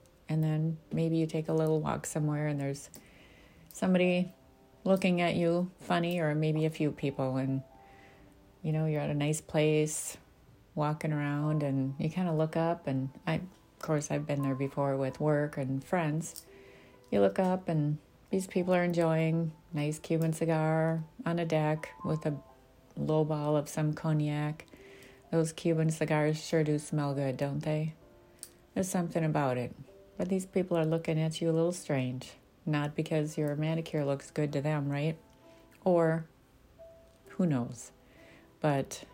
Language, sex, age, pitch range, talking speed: English, female, 30-49, 140-165 Hz, 165 wpm